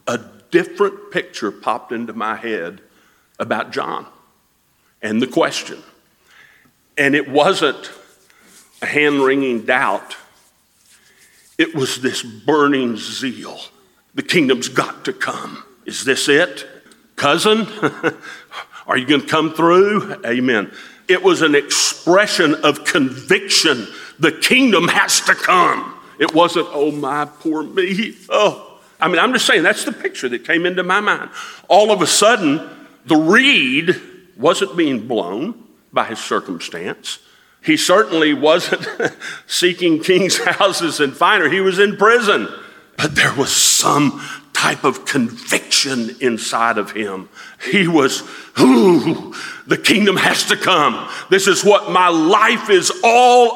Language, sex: English, male